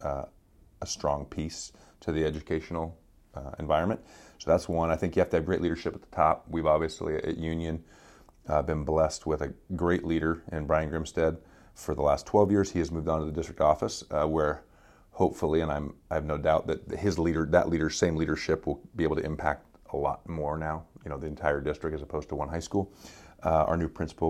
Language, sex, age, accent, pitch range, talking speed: English, male, 30-49, American, 75-85 Hz, 225 wpm